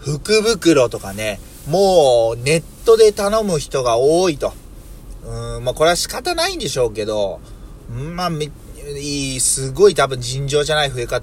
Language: Japanese